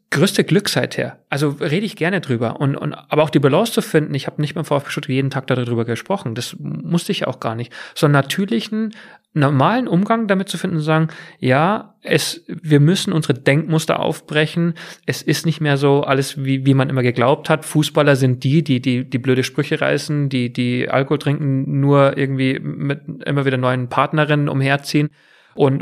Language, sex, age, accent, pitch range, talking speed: German, male, 40-59, German, 125-155 Hz, 195 wpm